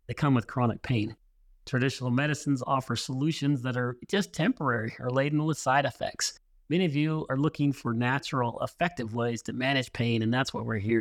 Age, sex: 30-49, male